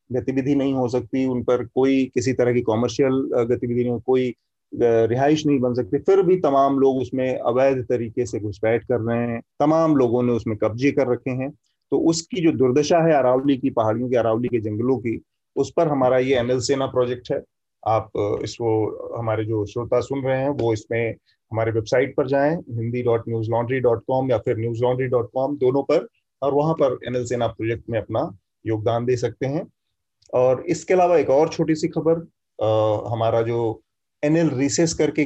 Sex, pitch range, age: male, 115-140 Hz, 30-49